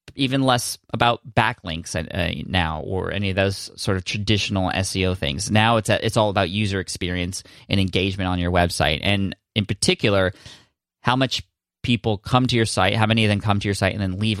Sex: male